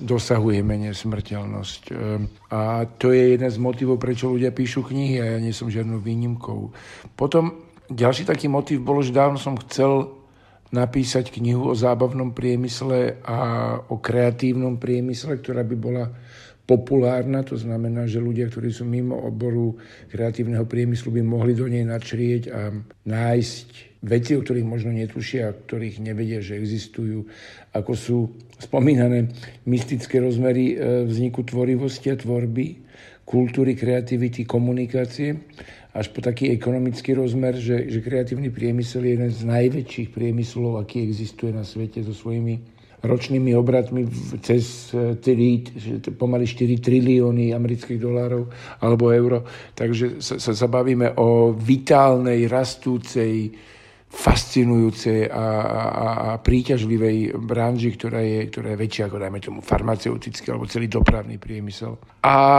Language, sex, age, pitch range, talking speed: Slovak, male, 50-69, 115-125 Hz, 130 wpm